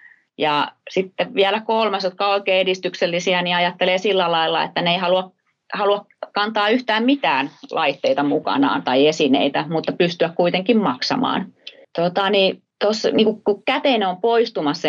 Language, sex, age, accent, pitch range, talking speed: Finnish, female, 30-49, native, 150-205 Hz, 145 wpm